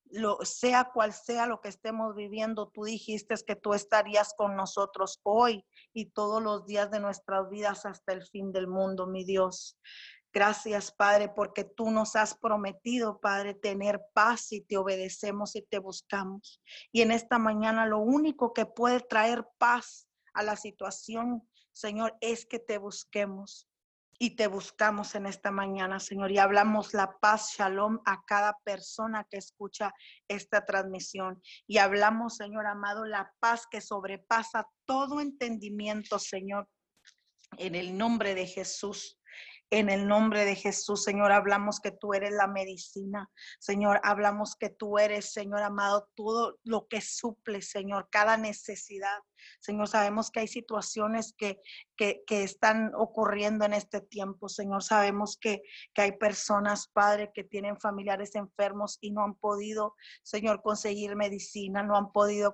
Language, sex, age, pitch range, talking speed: Spanish, female, 30-49, 200-220 Hz, 150 wpm